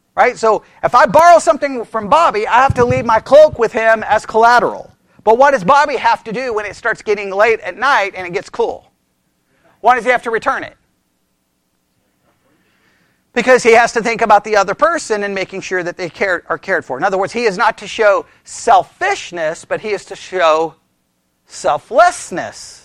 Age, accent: 40-59, American